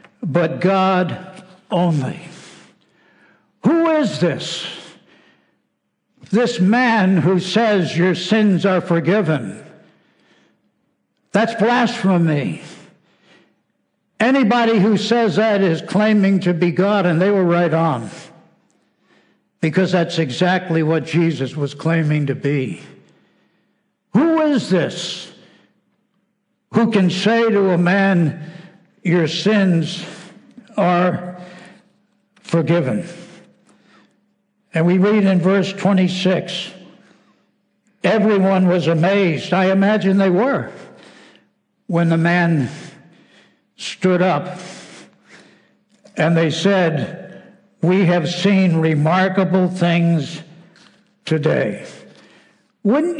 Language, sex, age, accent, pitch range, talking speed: English, male, 60-79, American, 170-200 Hz, 90 wpm